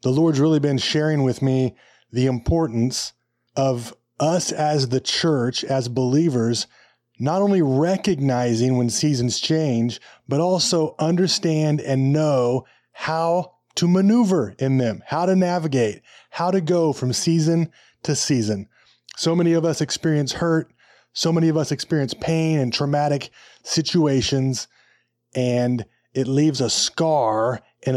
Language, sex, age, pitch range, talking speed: English, male, 30-49, 125-160 Hz, 135 wpm